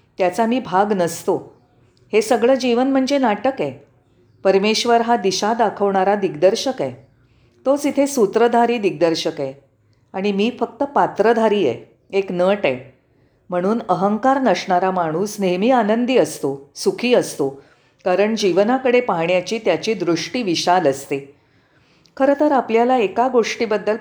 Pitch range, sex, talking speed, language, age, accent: 165-235 Hz, female, 120 wpm, Marathi, 40-59, native